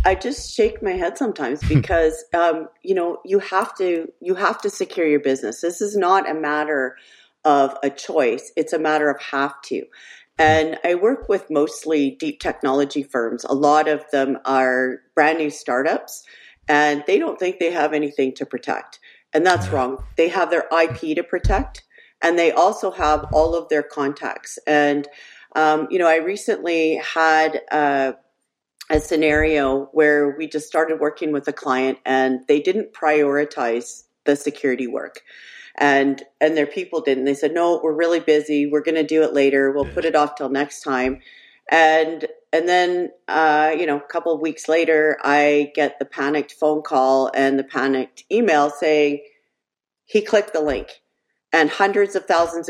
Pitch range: 140-170 Hz